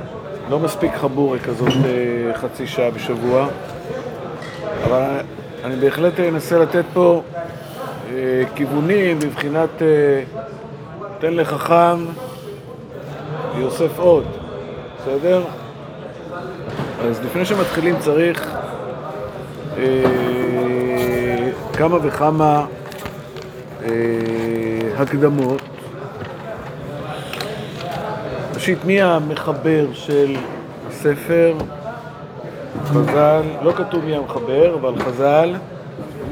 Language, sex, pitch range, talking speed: Hebrew, male, 130-165 Hz, 65 wpm